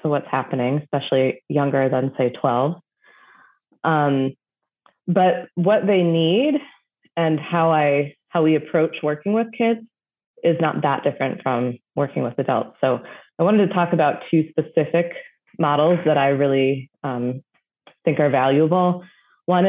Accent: American